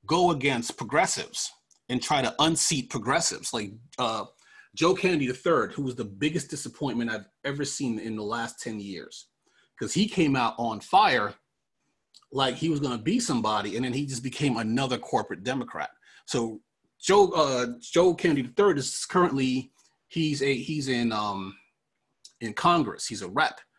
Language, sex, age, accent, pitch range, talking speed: English, male, 30-49, American, 125-175 Hz, 165 wpm